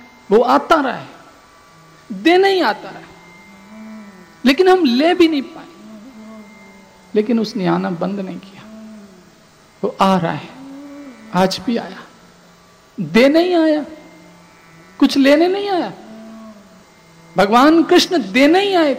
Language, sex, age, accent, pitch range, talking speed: Hindi, male, 50-69, native, 200-280 Hz, 125 wpm